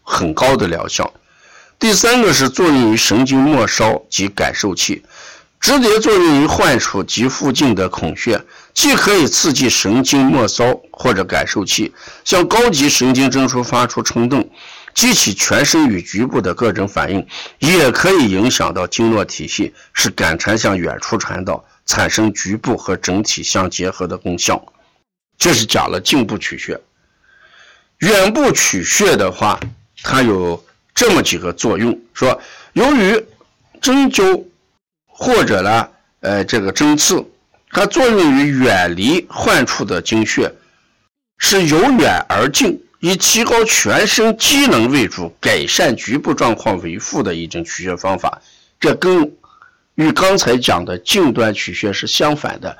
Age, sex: 50-69, male